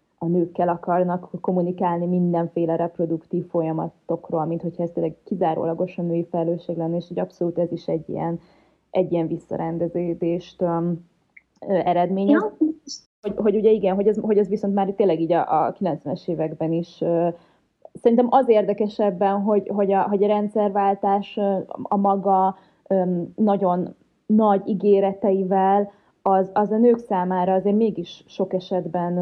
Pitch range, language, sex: 175-205 Hz, Hungarian, female